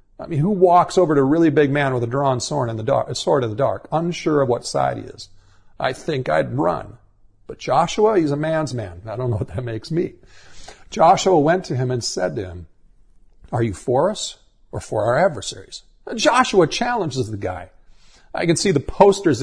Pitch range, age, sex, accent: 125-175 Hz, 50-69, male, American